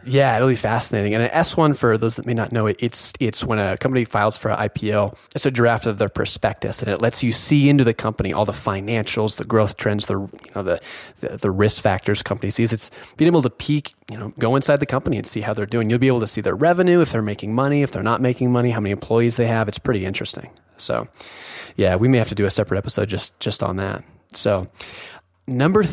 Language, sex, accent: English, male, American